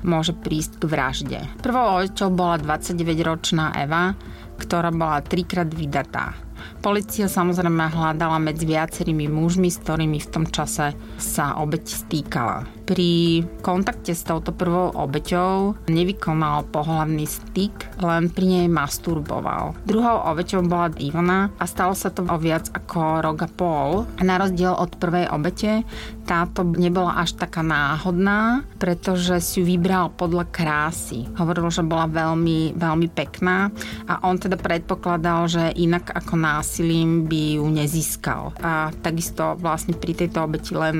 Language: Slovak